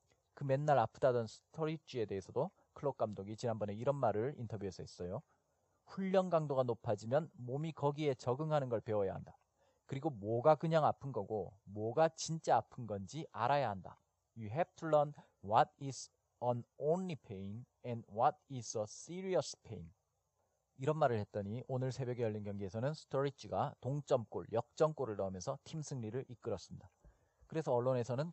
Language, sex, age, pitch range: Korean, male, 40-59, 110-155 Hz